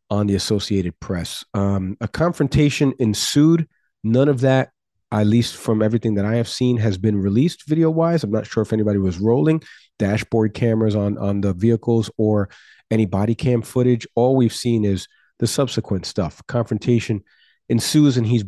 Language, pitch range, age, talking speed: English, 100-120 Hz, 40-59, 170 wpm